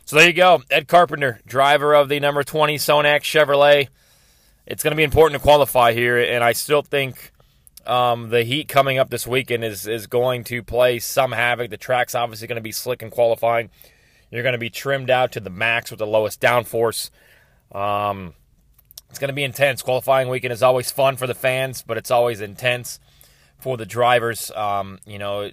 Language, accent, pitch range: English, American, 115-140 Hz